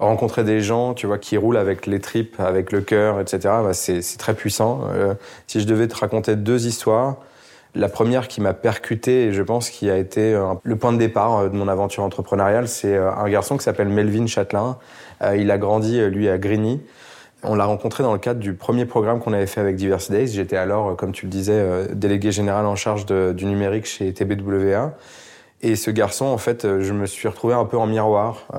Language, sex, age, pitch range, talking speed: French, male, 20-39, 100-115 Hz, 210 wpm